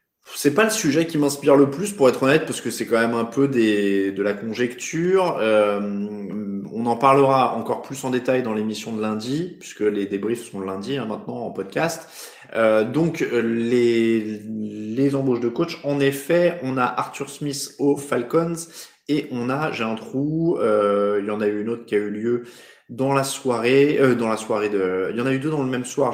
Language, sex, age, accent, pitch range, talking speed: French, male, 20-39, French, 105-140 Hz, 215 wpm